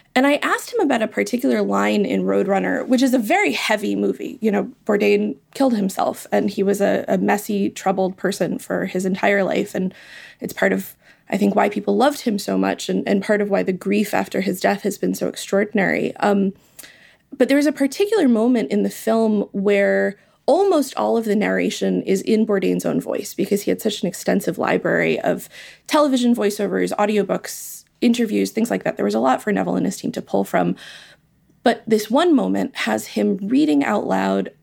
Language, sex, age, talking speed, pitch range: English, female, 20-39, 200 wpm, 170-255 Hz